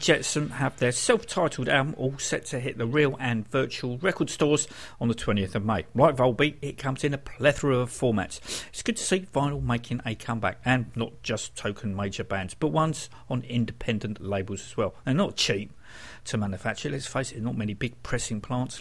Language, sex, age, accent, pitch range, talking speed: English, male, 50-69, British, 110-150 Hz, 200 wpm